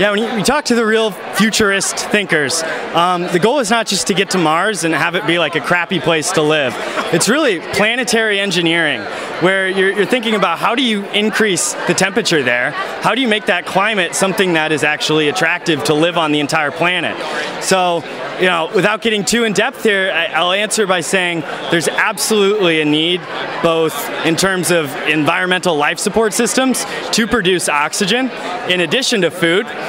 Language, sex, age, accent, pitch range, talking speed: English, male, 20-39, American, 165-205 Hz, 190 wpm